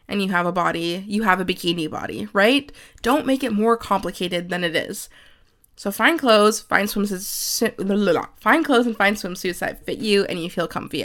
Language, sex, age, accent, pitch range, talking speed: English, female, 20-39, American, 185-245 Hz, 195 wpm